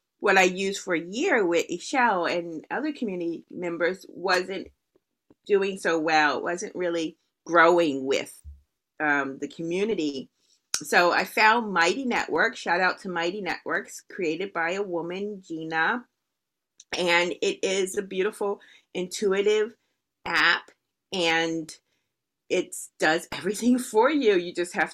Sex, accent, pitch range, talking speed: female, American, 155-215 Hz, 130 wpm